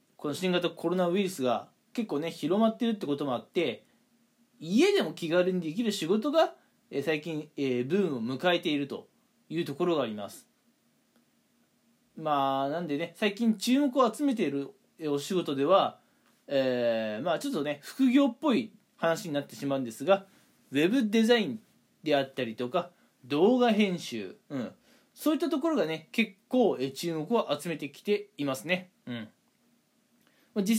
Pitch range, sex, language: 165-240 Hz, male, Japanese